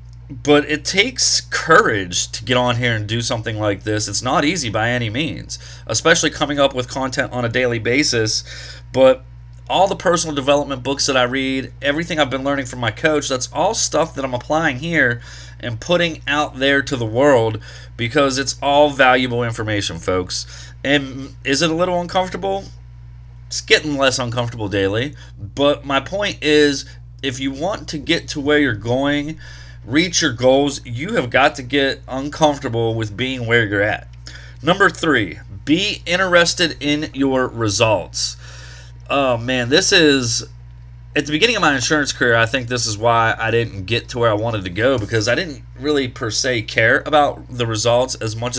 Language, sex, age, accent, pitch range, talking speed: English, male, 30-49, American, 110-140 Hz, 180 wpm